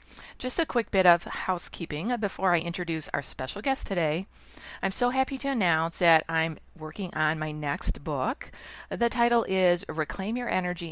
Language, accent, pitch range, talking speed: English, American, 150-205 Hz, 170 wpm